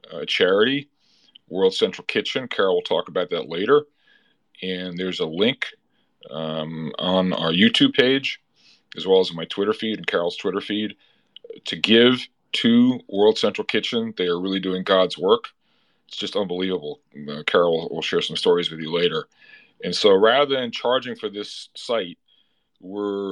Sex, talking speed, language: male, 160 wpm, English